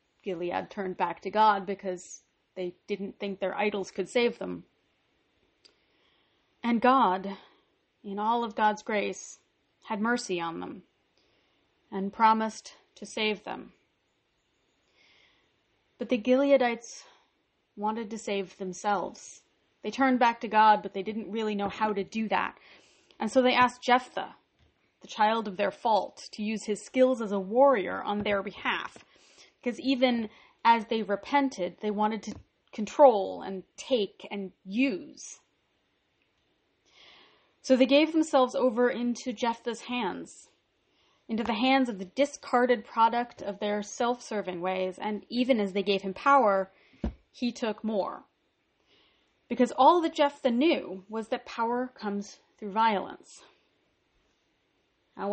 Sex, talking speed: female, 135 wpm